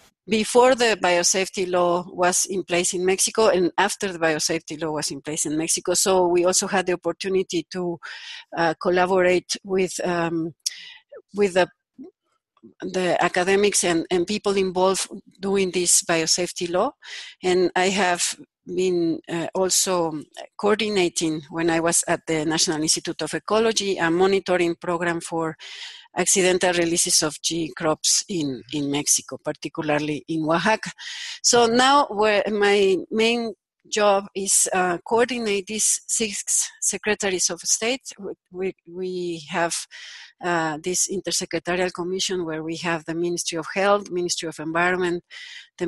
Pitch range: 170-200 Hz